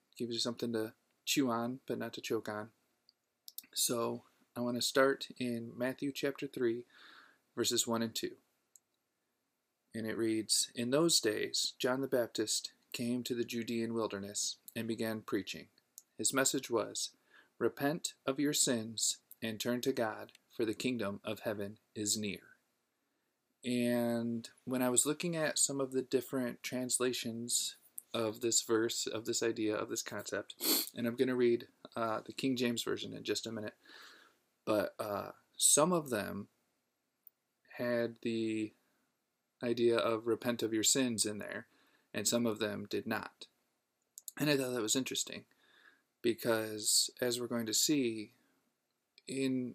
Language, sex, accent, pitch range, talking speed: English, male, American, 110-125 Hz, 150 wpm